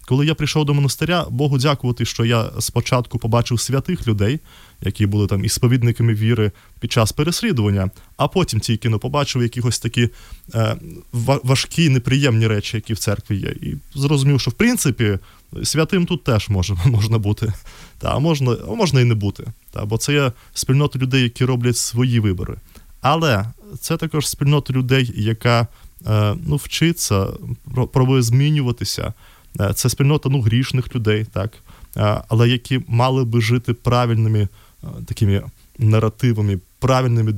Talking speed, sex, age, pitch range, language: 145 wpm, male, 20-39, 110-135 Hz, Ukrainian